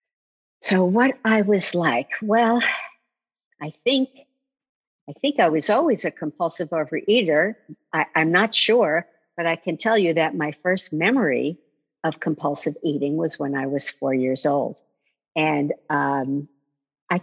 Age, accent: 50-69, American